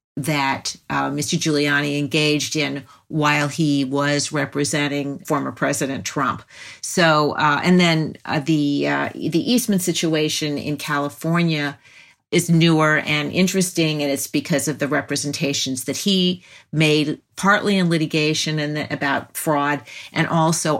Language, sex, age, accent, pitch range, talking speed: English, female, 50-69, American, 140-160 Hz, 135 wpm